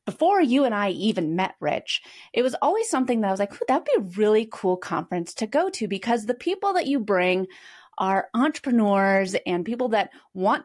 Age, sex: 30-49, female